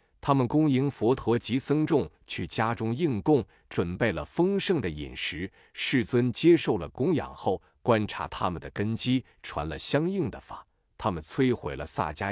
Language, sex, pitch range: Chinese, male, 100-145 Hz